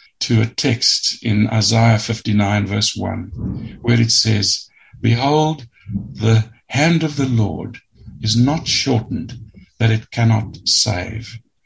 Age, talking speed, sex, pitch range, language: 60-79, 125 wpm, male, 110-135 Hz, English